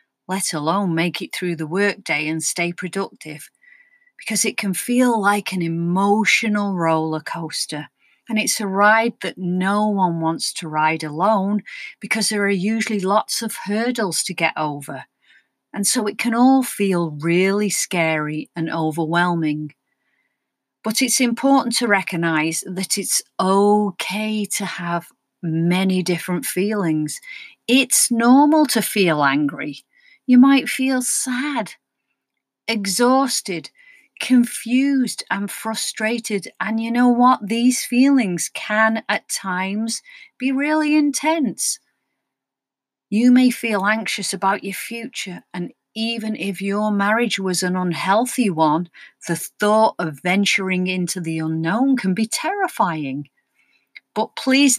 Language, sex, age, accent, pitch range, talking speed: English, female, 40-59, British, 175-235 Hz, 125 wpm